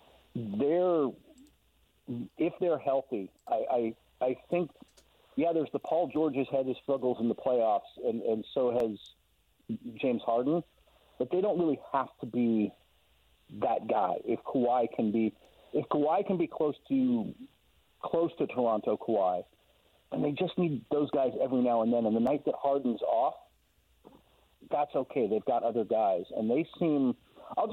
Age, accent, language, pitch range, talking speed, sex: 50-69, American, English, 110-155 Hz, 160 wpm, male